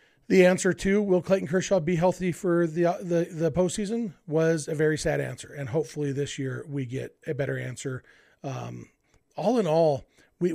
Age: 40-59